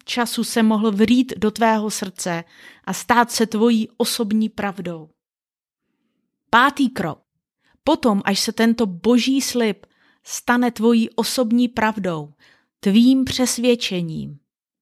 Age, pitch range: 30-49, 205-245 Hz